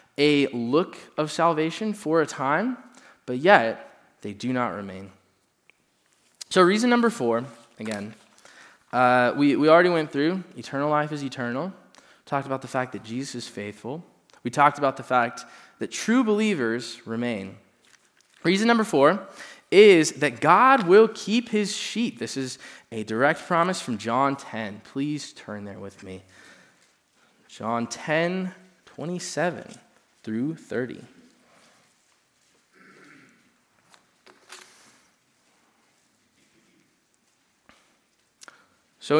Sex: male